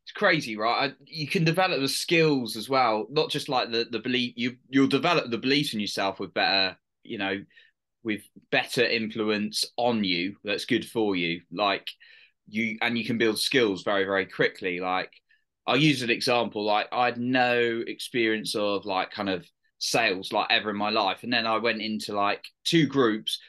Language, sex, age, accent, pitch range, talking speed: English, male, 20-39, British, 100-120 Hz, 190 wpm